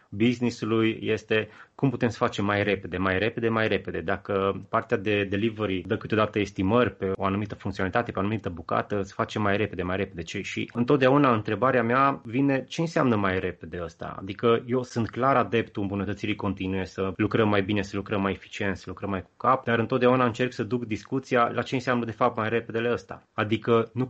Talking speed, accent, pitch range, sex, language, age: 195 wpm, native, 95-115 Hz, male, Romanian, 20-39